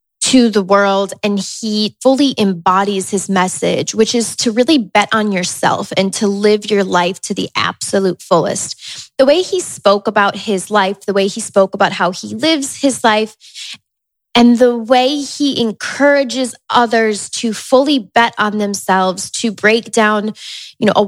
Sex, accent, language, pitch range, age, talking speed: female, American, English, 200-250 Hz, 10-29, 170 wpm